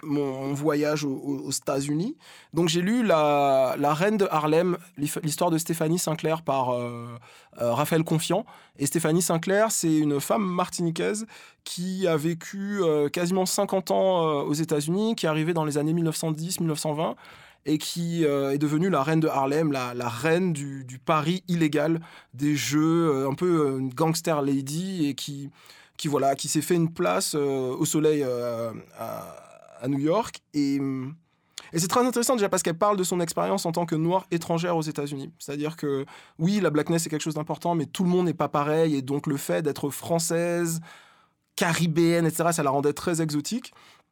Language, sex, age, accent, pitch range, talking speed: French, male, 20-39, French, 145-175 Hz, 190 wpm